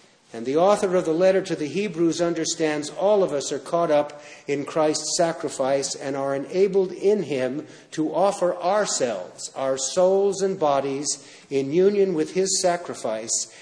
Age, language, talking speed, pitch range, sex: 50-69, English, 160 wpm, 135-170 Hz, male